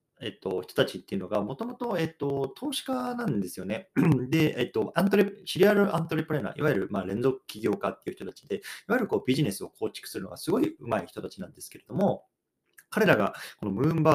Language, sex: Japanese, male